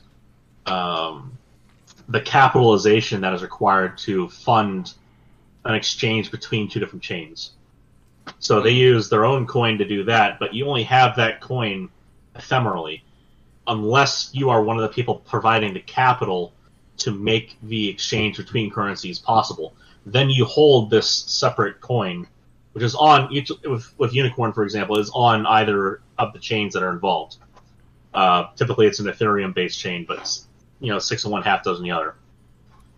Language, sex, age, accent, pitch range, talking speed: English, male, 30-49, American, 100-120 Hz, 160 wpm